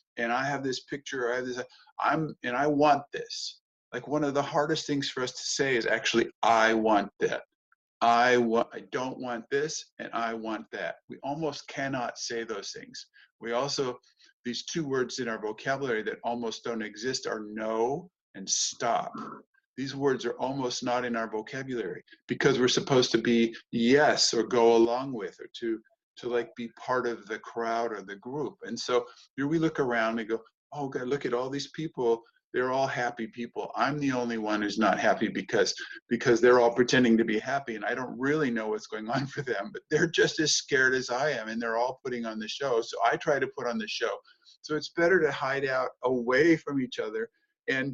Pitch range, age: 115-150 Hz, 50-69